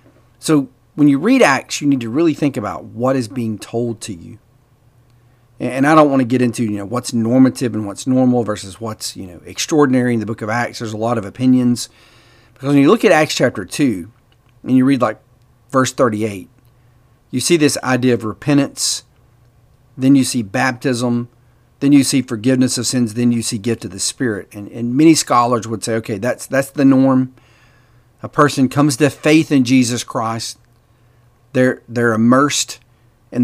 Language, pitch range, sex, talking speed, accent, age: English, 115-130 Hz, male, 190 wpm, American, 40-59